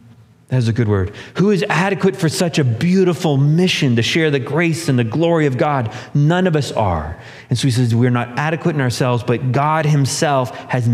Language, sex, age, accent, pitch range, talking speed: English, male, 30-49, American, 115-160 Hz, 210 wpm